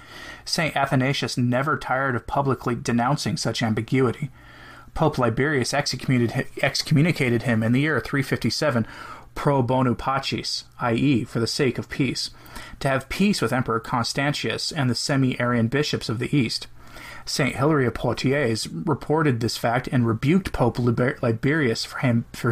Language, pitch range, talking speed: English, 120-145 Hz, 140 wpm